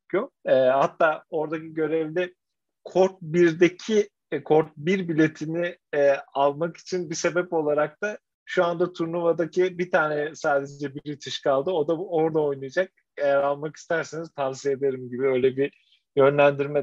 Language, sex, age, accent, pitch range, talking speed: Turkish, male, 40-59, native, 140-180 Hz, 135 wpm